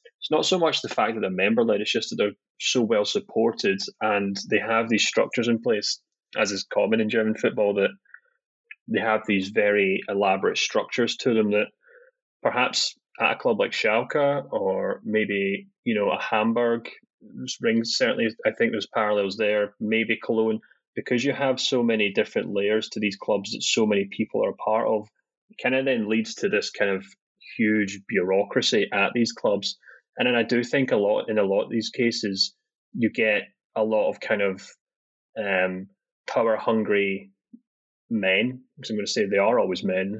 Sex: male